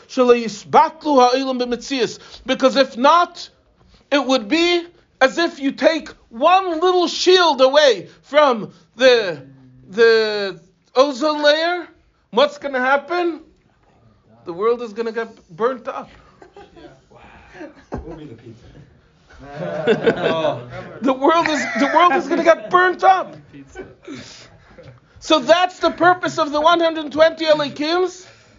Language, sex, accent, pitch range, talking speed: English, male, American, 260-340 Hz, 105 wpm